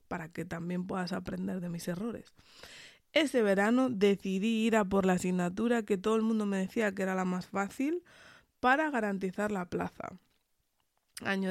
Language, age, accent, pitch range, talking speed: Spanish, 20-39, Spanish, 185-230 Hz, 165 wpm